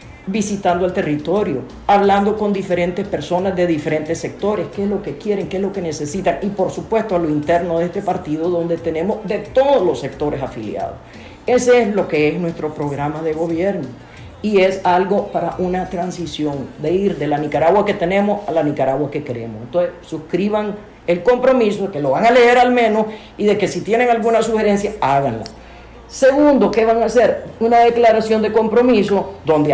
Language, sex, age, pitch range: Spanish, female, 50-69, 160-210 Hz